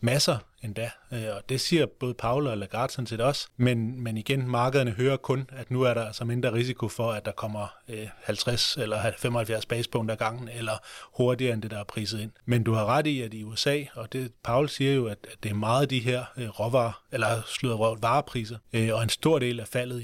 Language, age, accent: Danish, 30-49, native